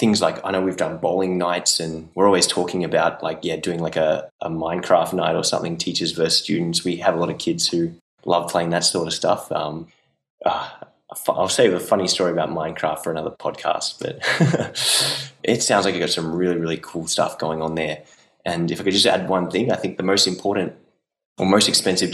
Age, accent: 20-39, Australian